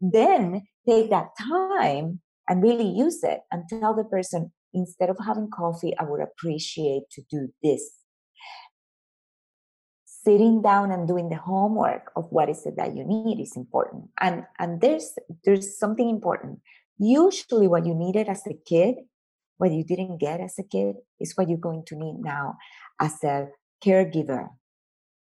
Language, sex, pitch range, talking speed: English, female, 160-200 Hz, 160 wpm